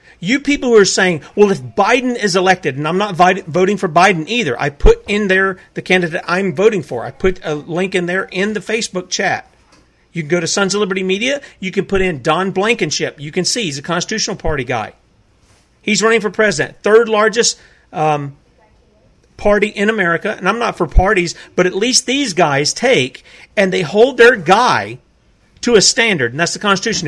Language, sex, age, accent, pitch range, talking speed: English, male, 40-59, American, 165-225 Hz, 200 wpm